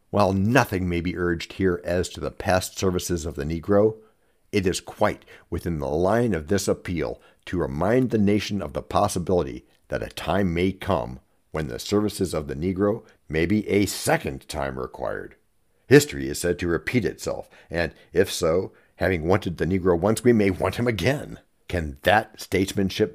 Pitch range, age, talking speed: 85-105 Hz, 60-79, 180 wpm